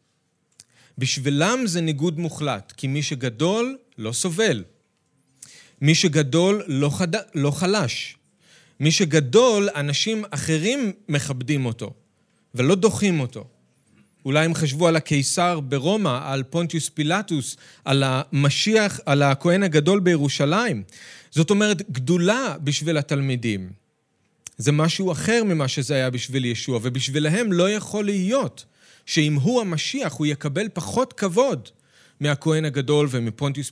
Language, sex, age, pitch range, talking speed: Hebrew, male, 40-59, 135-180 Hz, 115 wpm